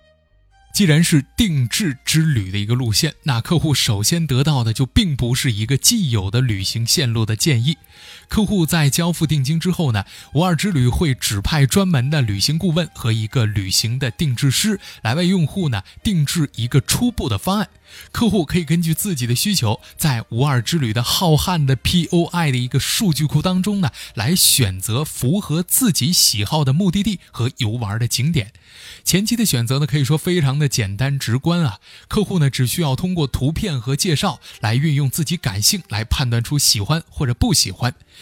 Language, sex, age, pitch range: Chinese, male, 20-39, 120-170 Hz